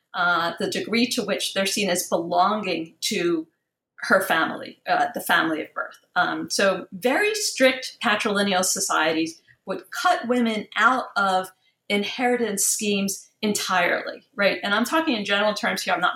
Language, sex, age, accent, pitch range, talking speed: English, female, 50-69, American, 185-240 Hz, 150 wpm